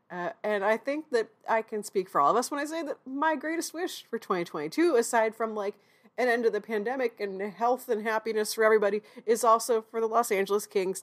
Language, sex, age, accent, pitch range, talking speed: English, female, 30-49, American, 200-285 Hz, 230 wpm